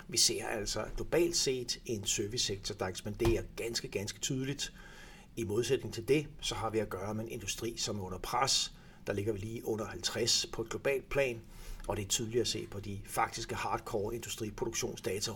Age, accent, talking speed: 60-79, native, 190 wpm